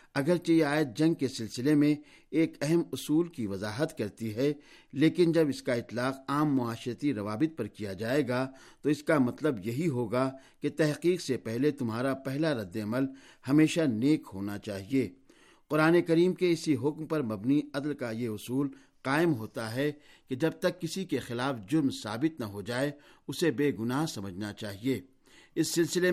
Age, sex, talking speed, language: 60-79, male, 170 wpm, Urdu